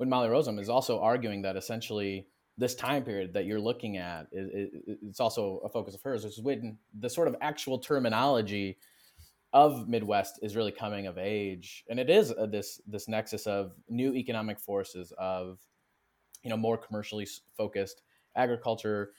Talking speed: 170 wpm